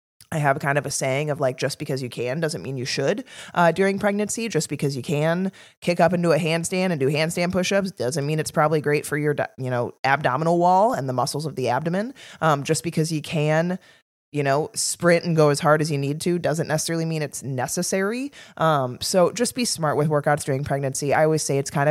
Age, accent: 20-39, American